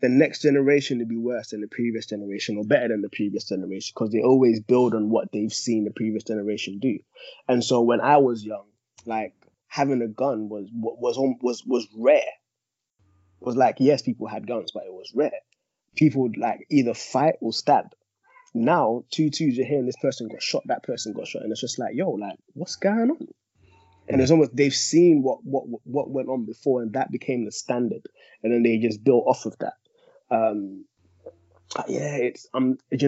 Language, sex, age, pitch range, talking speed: English, male, 20-39, 110-135 Hz, 200 wpm